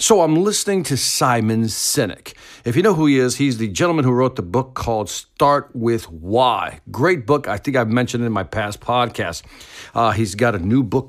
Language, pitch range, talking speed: English, 110-150 Hz, 215 wpm